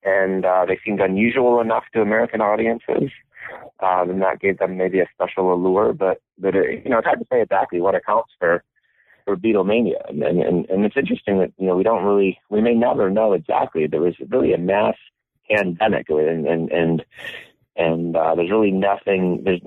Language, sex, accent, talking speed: English, male, American, 195 wpm